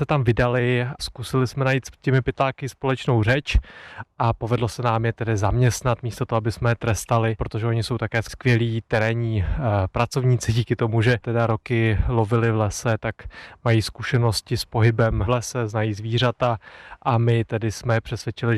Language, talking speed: Czech, 165 wpm